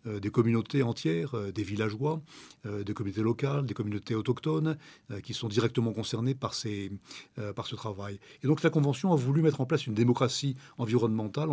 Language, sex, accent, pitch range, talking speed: French, male, French, 110-140 Hz, 165 wpm